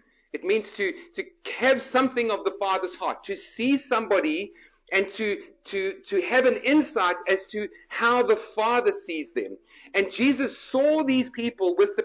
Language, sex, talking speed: English, male, 165 wpm